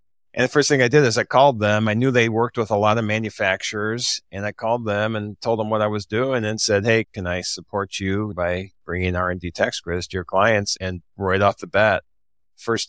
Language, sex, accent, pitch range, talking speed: English, male, American, 95-115 Hz, 235 wpm